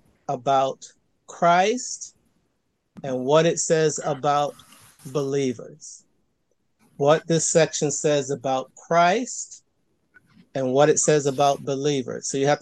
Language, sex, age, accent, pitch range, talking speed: English, male, 50-69, American, 135-150 Hz, 110 wpm